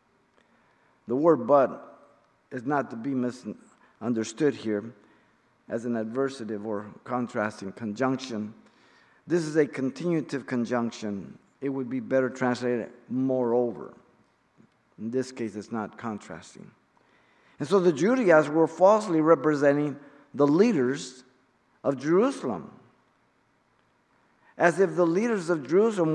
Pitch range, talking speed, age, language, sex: 125-165 Hz, 110 wpm, 50-69, English, male